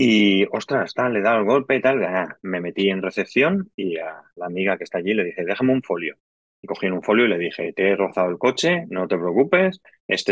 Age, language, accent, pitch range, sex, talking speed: 30-49, Spanish, Spanish, 95-130 Hz, male, 240 wpm